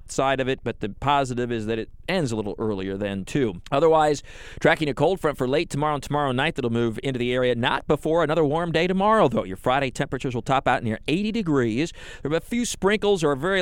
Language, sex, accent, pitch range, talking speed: English, male, American, 115-145 Hz, 240 wpm